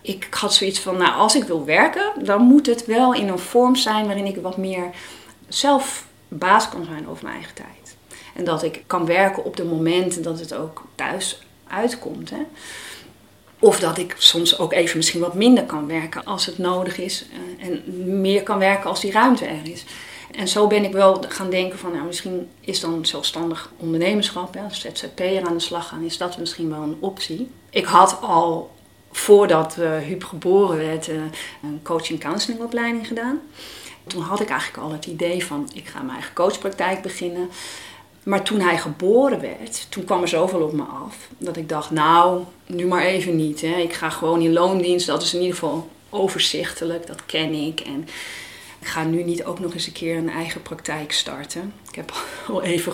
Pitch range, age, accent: 165-200 Hz, 40-59, Dutch